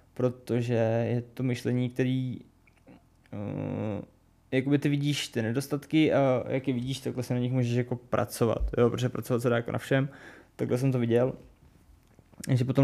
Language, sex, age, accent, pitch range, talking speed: Czech, male, 20-39, native, 120-135 Hz, 170 wpm